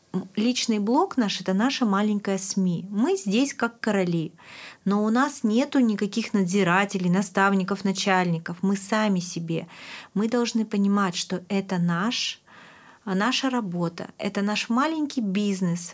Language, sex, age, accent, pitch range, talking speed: Russian, female, 30-49, native, 185-230 Hz, 130 wpm